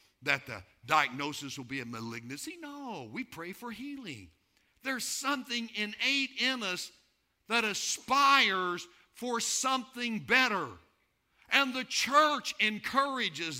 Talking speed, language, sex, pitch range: 115 wpm, English, male, 155-235 Hz